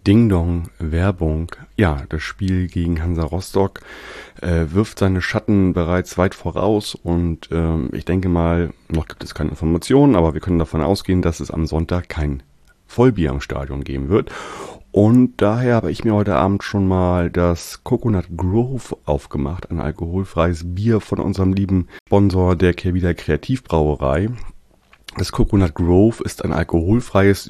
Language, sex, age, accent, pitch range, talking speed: German, male, 30-49, German, 85-100 Hz, 155 wpm